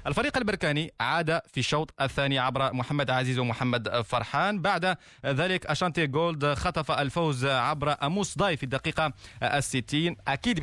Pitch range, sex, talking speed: 135-170 Hz, male, 135 wpm